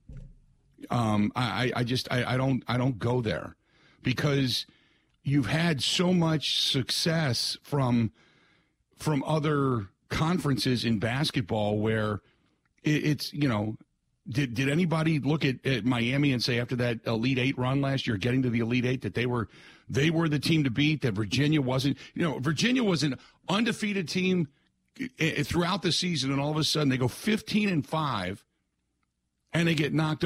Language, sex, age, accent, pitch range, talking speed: English, male, 50-69, American, 120-155 Hz, 165 wpm